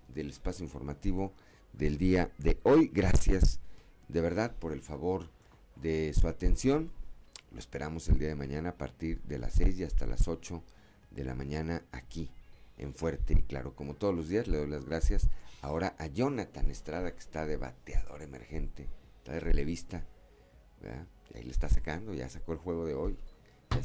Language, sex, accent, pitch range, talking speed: Spanish, male, Mexican, 70-95 Hz, 180 wpm